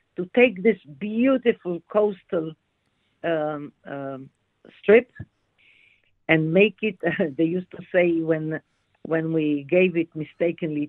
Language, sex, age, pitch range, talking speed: English, female, 50-69, 155-200 Hz, 115 wpm